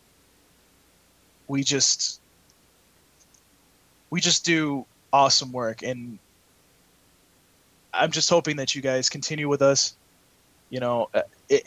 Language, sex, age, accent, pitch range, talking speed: English, male, 20-39, American, 120-145 Hz, 105 wpm